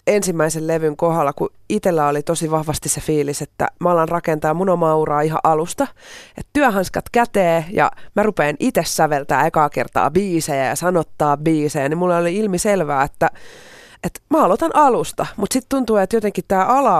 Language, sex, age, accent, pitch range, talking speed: Finnish, female, 30-49, native, 145-185 Hz, 165 wpm